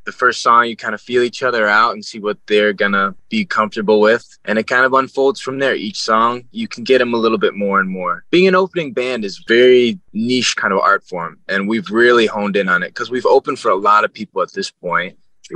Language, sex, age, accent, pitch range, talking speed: English, male, 20-39, American, 105-130 Hz, 260 wpm